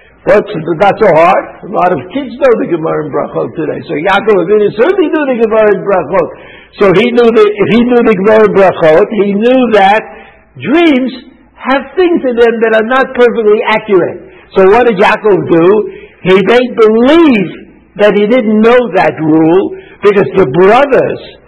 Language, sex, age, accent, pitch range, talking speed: English, male, 60-79, American, 185-280 Hz, 170 wpm